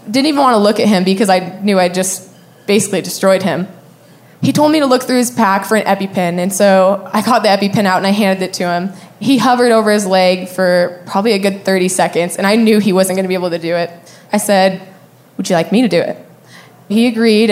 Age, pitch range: 20-39, 185-220 Hz